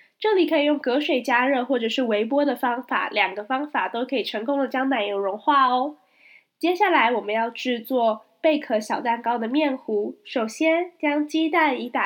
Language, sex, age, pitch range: Chinese, female, 10-29, 235-300 Hz